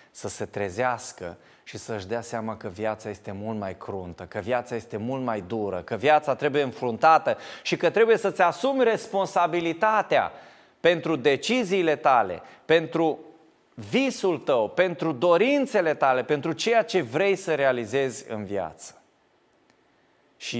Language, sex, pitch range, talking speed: Romanian, male, 105-155 Hz, 135 wpm